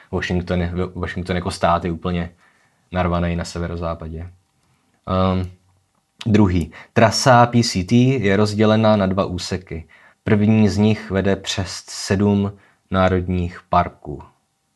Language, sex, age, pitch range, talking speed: Czech, male, 20-39, 90-105 Hz, 105 wpm